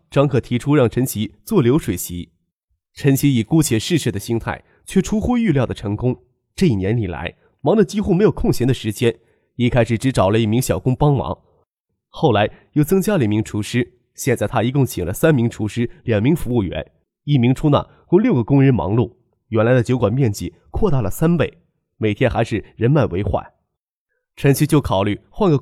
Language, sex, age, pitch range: Chinese, male, 20-39, 110-155 Hz